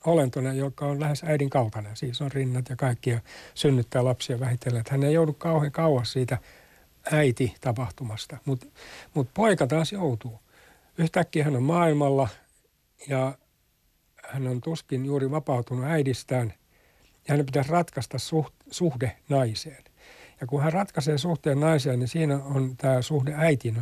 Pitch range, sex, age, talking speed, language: 120-145 Hz, male, 60-79, 140 wpm, Finnish